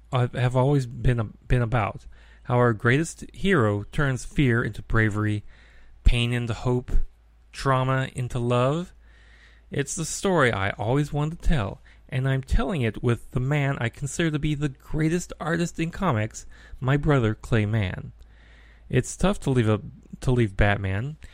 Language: English